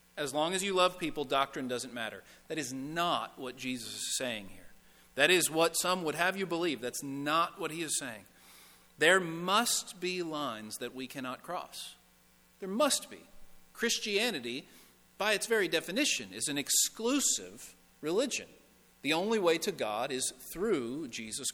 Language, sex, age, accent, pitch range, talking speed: English, male, 40-59, American, 125-175 Hz, 165 wpm